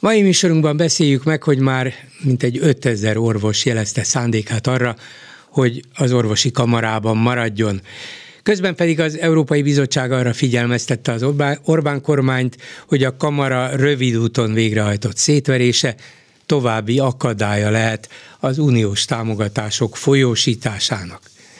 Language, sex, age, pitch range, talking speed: Hungarian, male, 60-79, 115-140 Hz, 115 wpm